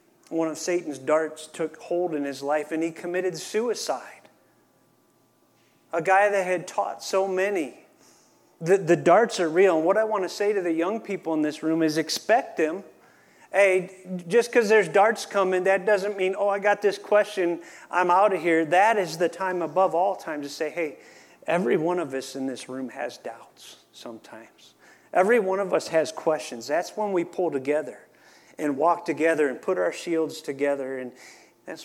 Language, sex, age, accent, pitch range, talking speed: English, male, 40-59, American, 160-200 Hz, 190 wpm